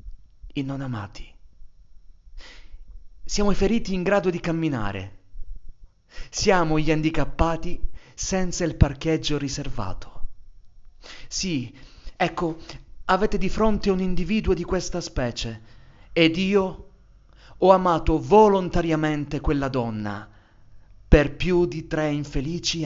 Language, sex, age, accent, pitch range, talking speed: Italian, male, 30-49, native, 105-160 Hz, 100 wpm